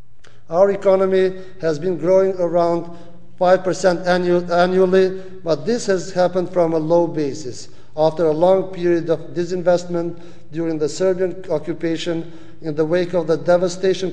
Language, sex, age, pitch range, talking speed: English, male, 50-69, 150-180 Hz, 135 wpm